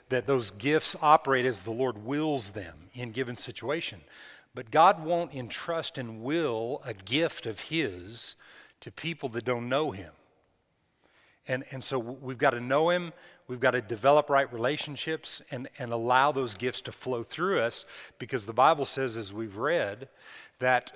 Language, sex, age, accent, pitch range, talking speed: English, male, 40-59, American, 110-135 Hz, 170 wpm